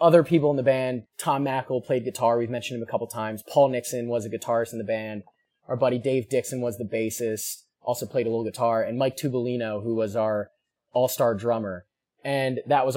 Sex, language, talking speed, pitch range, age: male, English, 215 wpm, 115-150 Hz, 20-39